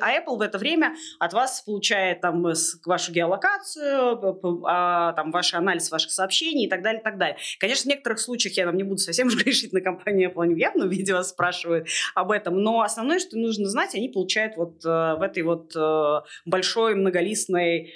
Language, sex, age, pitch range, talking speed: Russian, female, 20-39, 170-225 Hz, 195 wpm